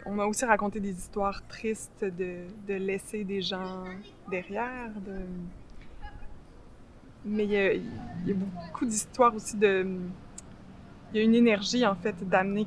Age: 20-39